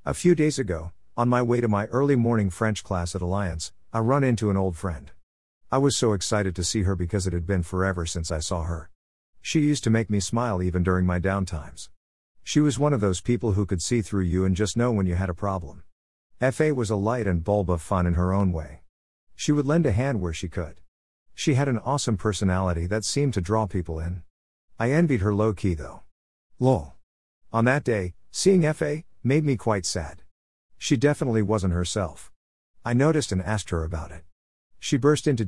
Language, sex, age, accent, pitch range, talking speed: English, male, 50-69, American, 85-120 Hz, 215 wpm